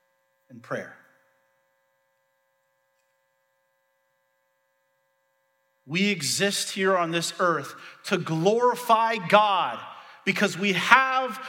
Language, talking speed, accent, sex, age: English, 75 wpm, American, male, 40-59